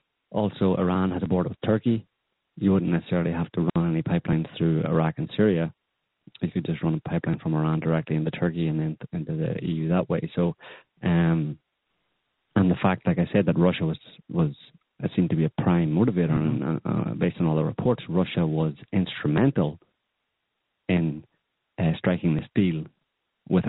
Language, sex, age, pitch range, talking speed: English, male, 30-49, 80-95 Hz, 180 wpm